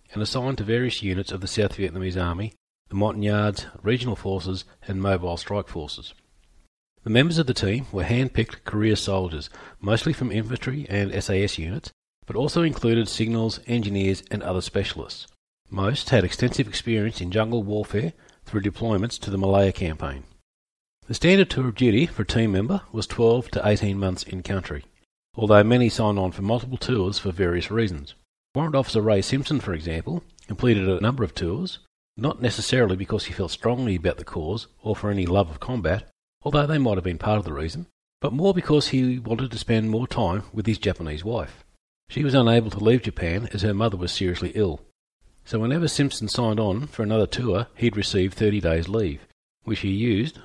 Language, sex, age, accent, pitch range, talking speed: English, male, 40-59, Australian, 95-120 Hz, 185 wpm